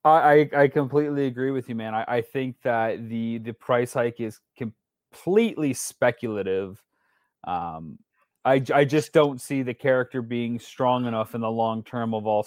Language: English